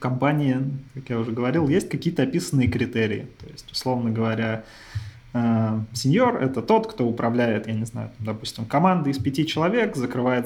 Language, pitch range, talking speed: Russian, 115-140 Hz, 160 wpm